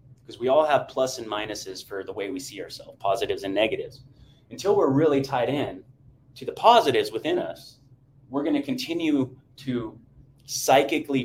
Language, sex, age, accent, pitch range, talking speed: English, male, 30-49, American, 125-140 Hz, 170 wpm